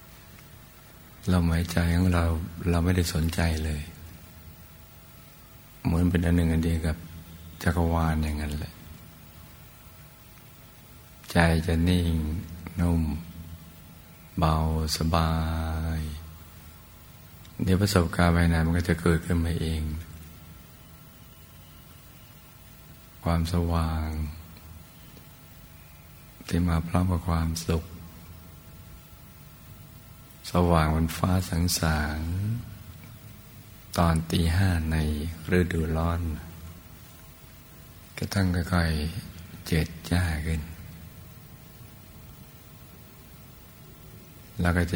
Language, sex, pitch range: Thai, male, 80-85 Hz